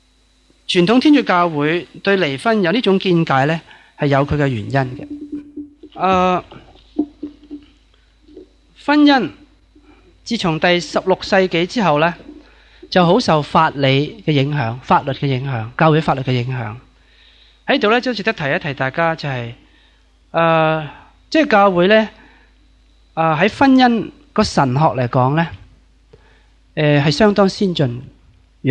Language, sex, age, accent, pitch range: Chinese, male, 30-49, native, 140-210 Hz